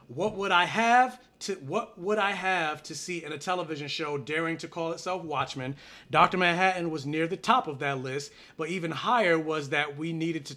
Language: English